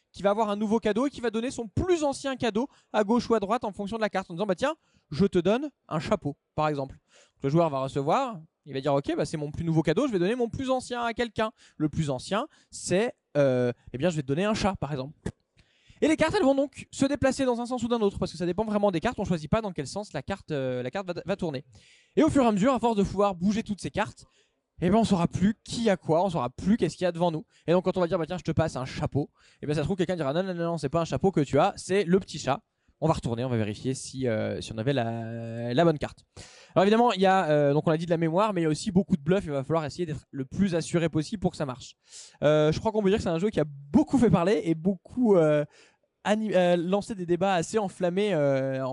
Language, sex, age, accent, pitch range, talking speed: French, male, 20-39, French, 150-205 Hz, 305 wpm